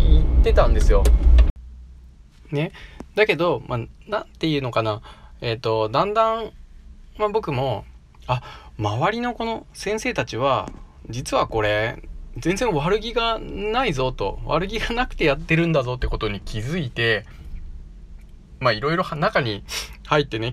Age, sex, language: 20-39, male, Japanese